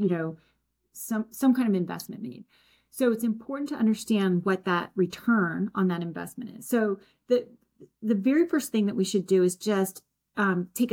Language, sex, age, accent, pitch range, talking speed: English, female, 30-49, American, 190-230 Hz, 185 wpm